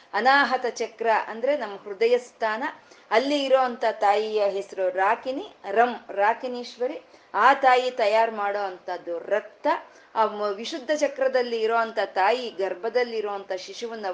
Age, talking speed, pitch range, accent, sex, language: 30-49, 110 wpm, 195-245 Hz, native, female, Kannada